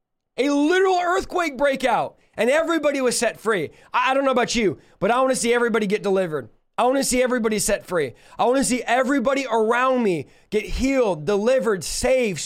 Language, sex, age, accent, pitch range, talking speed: English, male, 20-39, American, 200-255 Hz, 200 wpm